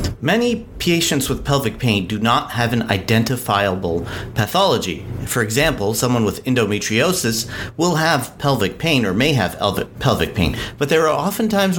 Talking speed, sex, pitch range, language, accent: 155 wpm, male, 100-130 Hz, English, American